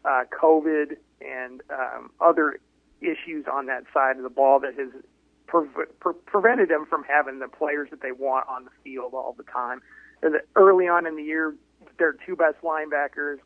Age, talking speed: 30-49, 185 wpm